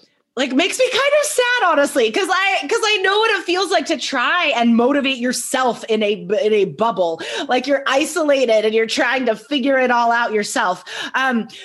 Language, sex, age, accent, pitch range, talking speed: English, female, 20-39, American, 220-335 Hz, 200 wpm